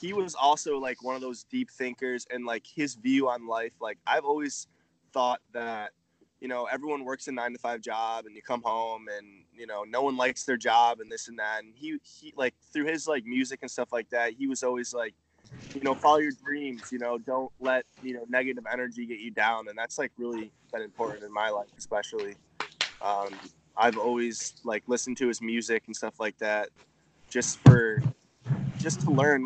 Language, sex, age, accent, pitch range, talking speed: English, male, 20-39, American, 115-135 Hz, 210 wpm